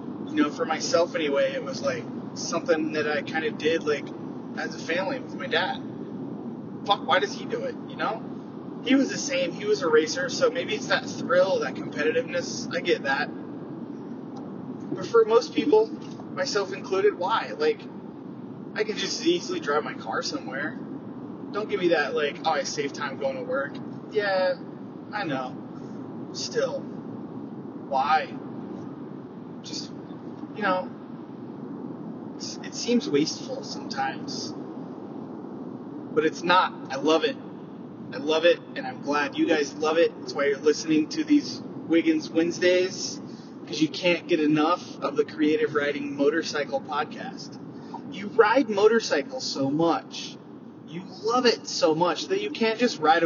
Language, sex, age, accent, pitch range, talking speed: English, male, 20-39, American, 170-280 Hz, 155 wpm